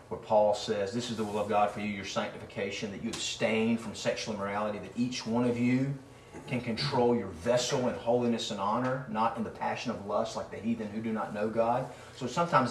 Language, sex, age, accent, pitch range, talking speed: English, male, 40-59, American, 110-125 Hz, 225 wpm